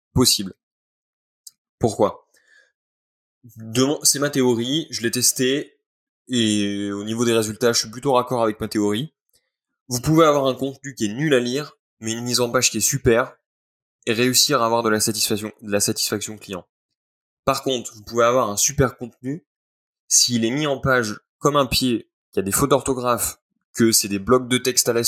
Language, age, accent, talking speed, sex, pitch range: French, 20-39, French, 190 wpm, male, 105-130 Hz